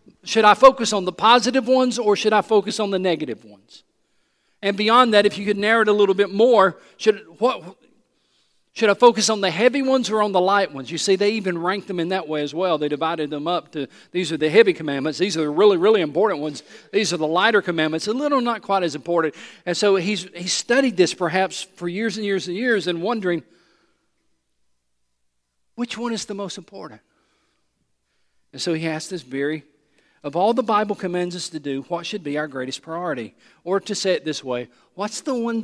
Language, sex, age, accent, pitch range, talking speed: English, male, 50-69, American, 145-205 Hz, 220 wpm